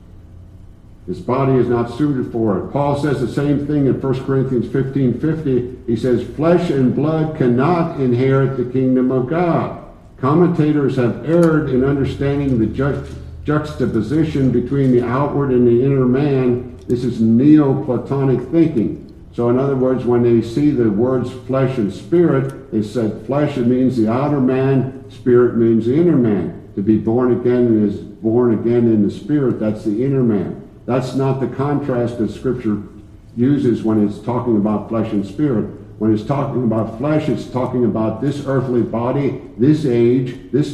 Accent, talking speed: American, 170 wpm